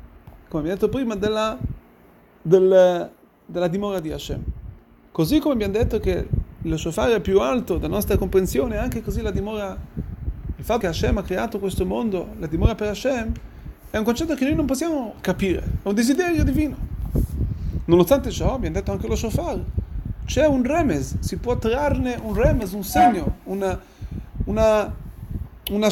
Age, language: 30-49, Italian